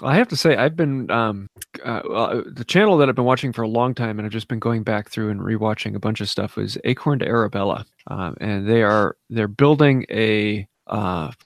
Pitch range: 105-125 Hz